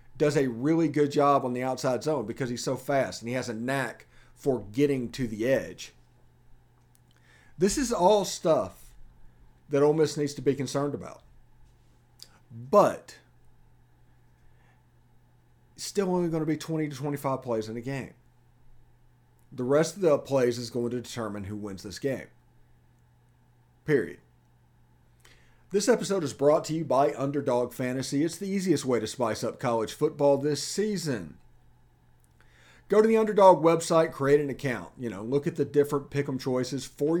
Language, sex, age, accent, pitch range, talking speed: English, male, 40-59, American, 120-145 Hz, 165 wpm